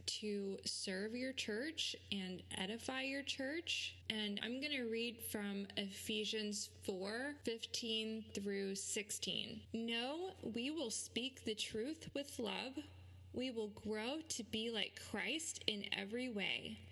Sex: female